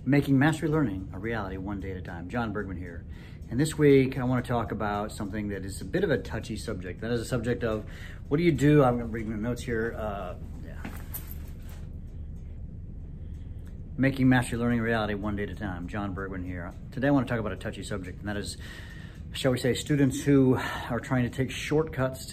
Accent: American